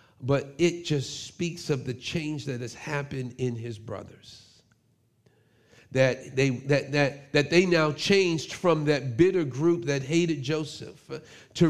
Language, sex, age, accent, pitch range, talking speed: English, male, 40-59, American, 140-190 Hz, 150 wpm